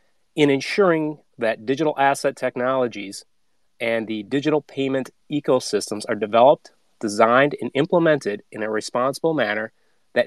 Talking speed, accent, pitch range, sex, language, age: 125 wpm, American, 115-150 Hz, male, English, 30-49